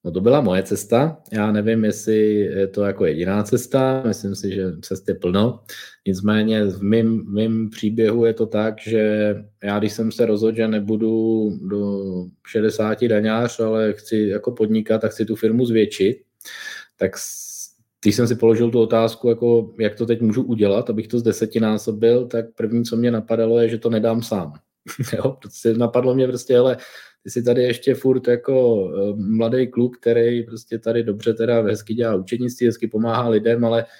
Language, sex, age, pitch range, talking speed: Czech, male, 20-39, 105-120 Hz, 175 wpm